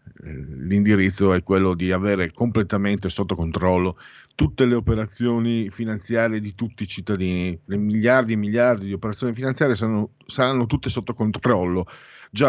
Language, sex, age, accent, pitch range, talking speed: Italian, male, 50-69, native, 95-115 Hz, 140 wpm